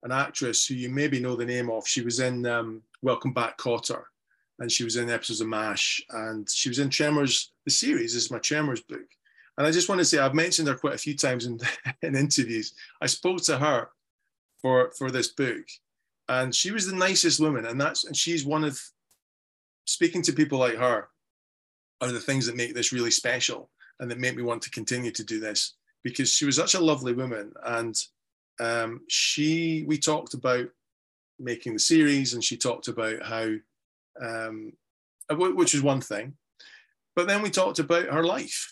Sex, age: male, 20-39